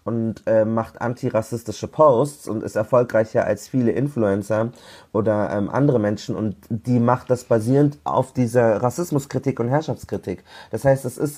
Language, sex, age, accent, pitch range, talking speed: German, male, 30-49, German, 110-135 Hz, 155 wpm